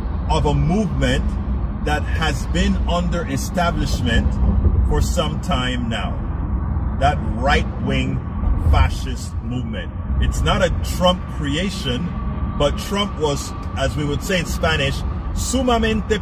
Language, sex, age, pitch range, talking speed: English, male, 40-59, 70-90 Hz, 120 wpm